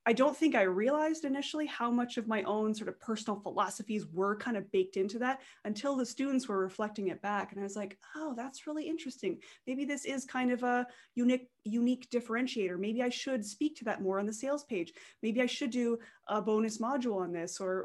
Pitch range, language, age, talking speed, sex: 195-250 Hz, English, 20-39, 220 wpm, female